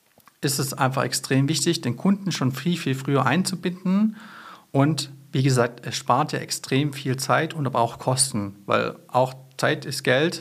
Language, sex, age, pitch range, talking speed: German, male, 50-69, 125-160 Hz, 175 wpm